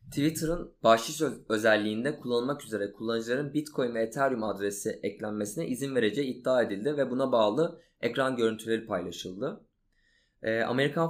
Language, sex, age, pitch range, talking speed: Turkish, male, 20-39, 110-145 Hz, 125 wpm